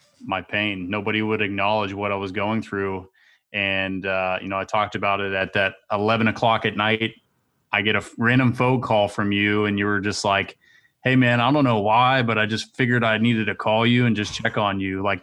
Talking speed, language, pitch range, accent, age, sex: 230 wpm, English, 100-120 Hz, American, 20-39, male